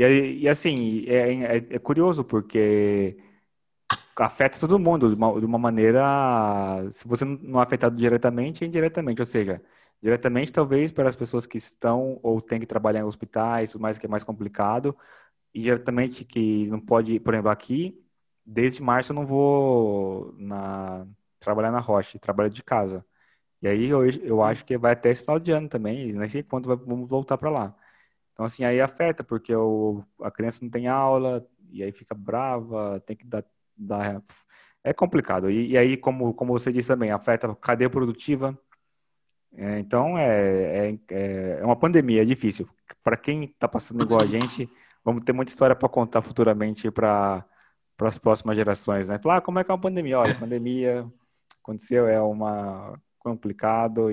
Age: 20-39